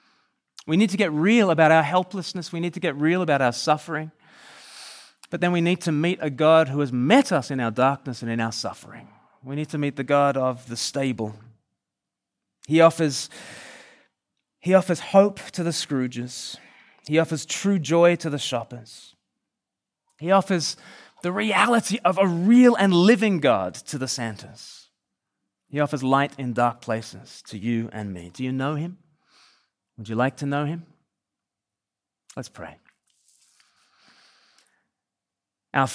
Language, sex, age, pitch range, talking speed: English, male, 20-39, 125-165 Hz, 160 wpm